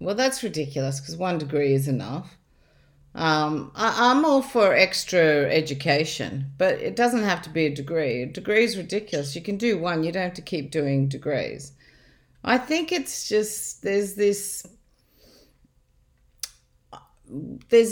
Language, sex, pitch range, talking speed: English, female, 150-215 Hz, 150 wpm